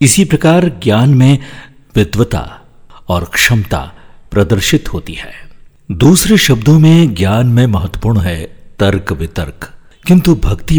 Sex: male